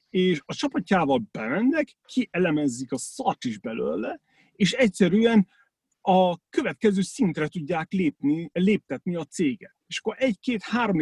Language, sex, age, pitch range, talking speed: Hungarian, male, 40-59, 160-225 Hz, 120 wpm